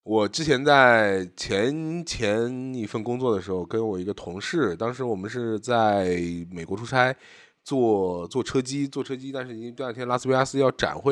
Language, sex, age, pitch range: Chinese, male, 20-39, 95-130 Hz